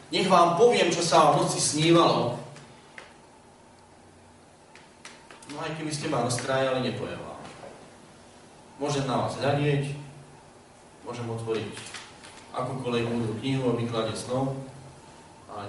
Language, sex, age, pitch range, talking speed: Slovak, male, 40-59, 135-175 Hz, 105 wpm